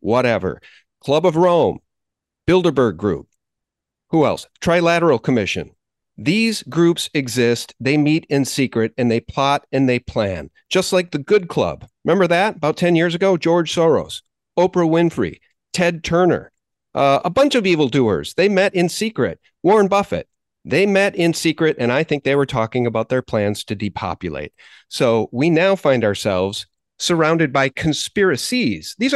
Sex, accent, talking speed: male, American, 155 wpm